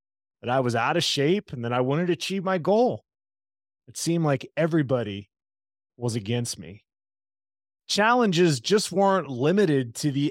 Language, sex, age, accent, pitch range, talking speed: English, male, 30-49, American, 105-165 Hz, 155 wpm